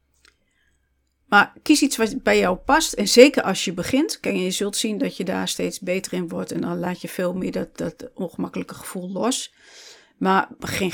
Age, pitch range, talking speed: 40-59, 185-260 Hz, 195 wpm